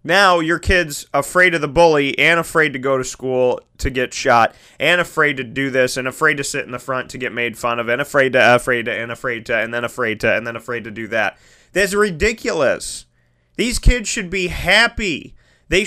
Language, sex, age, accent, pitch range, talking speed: English, male, 20-39, American, 125-195 Hz, 225 wpm